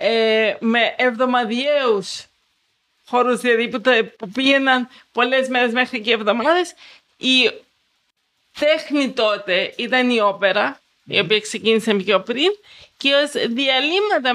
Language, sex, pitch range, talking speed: Greek, female, 240-305 Hz, 110 wpm